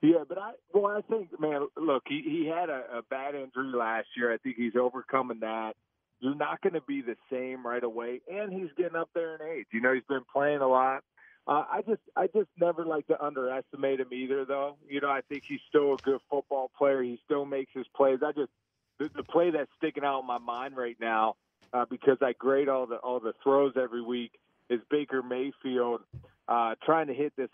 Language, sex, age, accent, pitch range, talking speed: English, male, 40-59, American, 125-160 Hz, 225 wpm